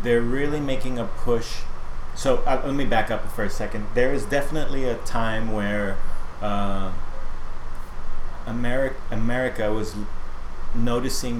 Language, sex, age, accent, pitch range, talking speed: English, male, 30-49, American, 95-115 Hz, 130 wpm